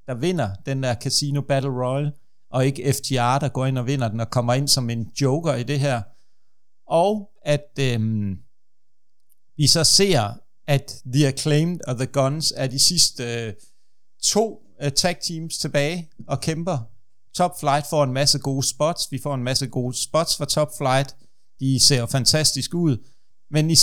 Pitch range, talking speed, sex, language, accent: 130-150 Hz, 175 wpm, male, Danish, native